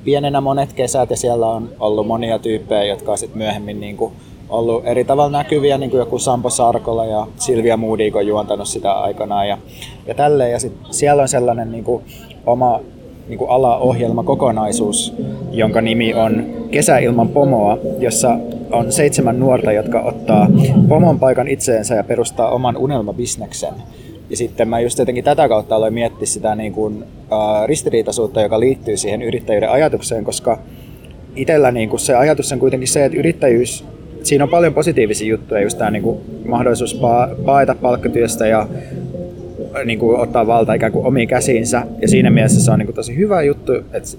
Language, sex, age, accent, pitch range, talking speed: Finnish, male, 20-39, native, 110-130 Hz, 160 wpm